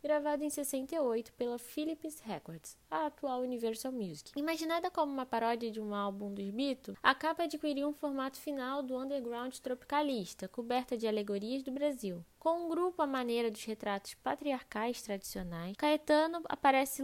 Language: Portuguese